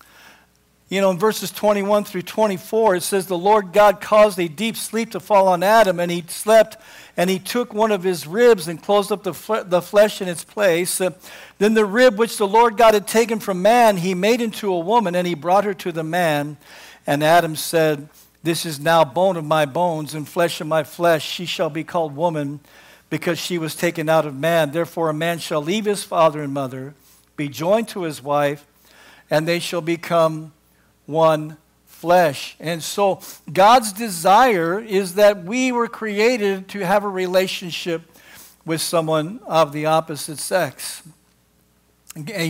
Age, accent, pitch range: 60-79, American, 160-210 Hz